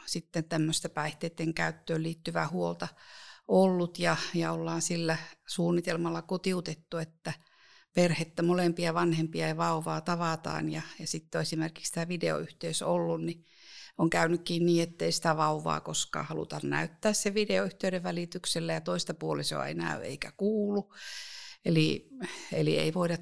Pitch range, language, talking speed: 160-180 Hz, Finnish, 130 wpm